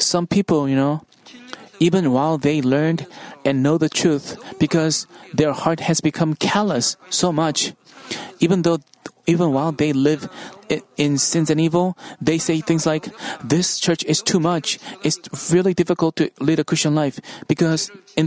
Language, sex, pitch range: Korean, male, 155-185 Hz